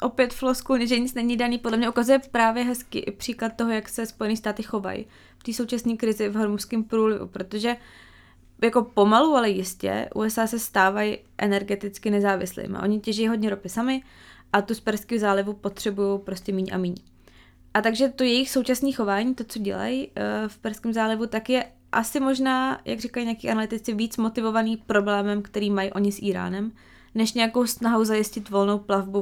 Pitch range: 200-225 Hz